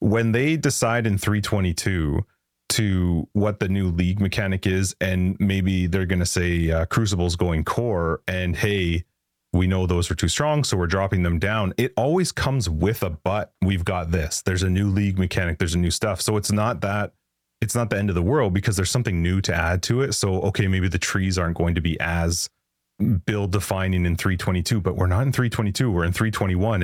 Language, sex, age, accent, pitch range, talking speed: English, male, 30-49, American, 90-110 Hz, 210 wpm